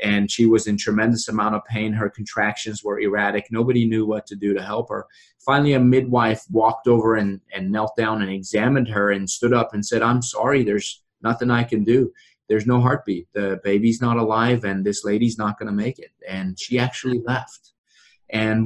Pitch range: 105-125 Hz